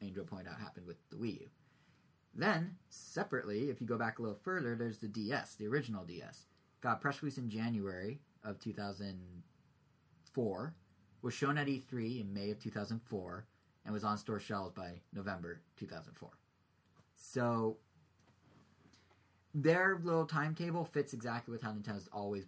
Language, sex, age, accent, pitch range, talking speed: English, male, 20-39, American, 105-140 Hz, 150 wpm